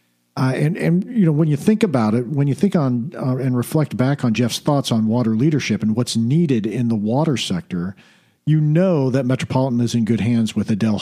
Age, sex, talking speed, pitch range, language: 50-69, male, 225 wpm, 115-150 Hz, English